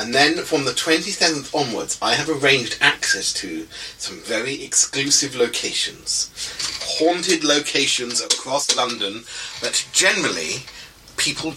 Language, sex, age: English, male, 30-49